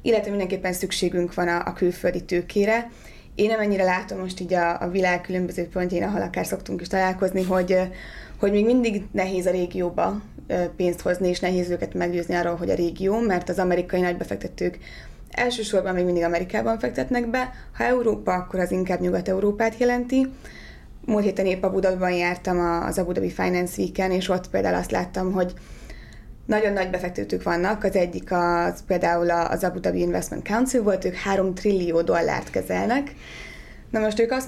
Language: Hungarian